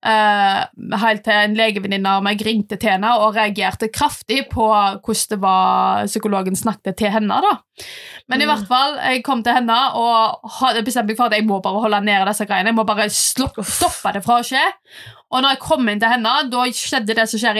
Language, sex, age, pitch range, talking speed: English, female, 20-39, 210-265 Hz, 210 wpm